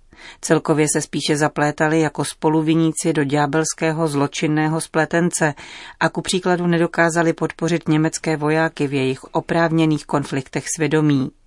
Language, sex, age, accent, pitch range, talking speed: Czech, female, 30-49, native, 145-170 Hz, 115 wpm